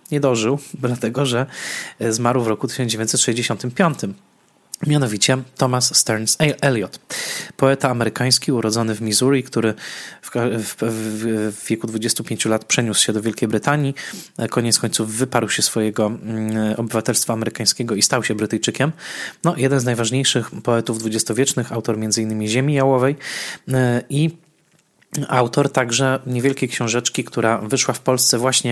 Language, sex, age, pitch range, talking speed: Polish, male, 20-39, 115-135 Hz, 125 wpm